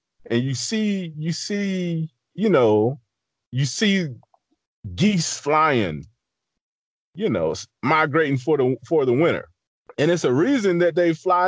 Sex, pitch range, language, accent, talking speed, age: male, 130-185 Hz, English, American, 135 wpm, 30-49